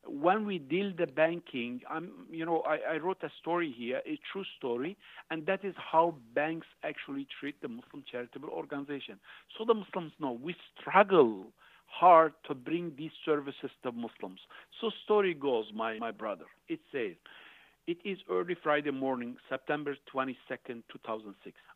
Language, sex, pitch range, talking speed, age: English, male, 130-175 Hz, 155 wpm, 60-79